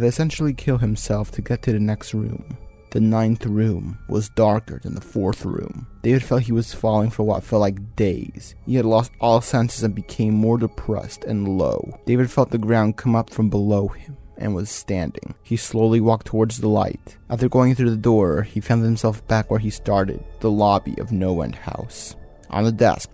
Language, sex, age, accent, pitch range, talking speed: English, male, 20-39, American, 100-115 Hz, 200 wpm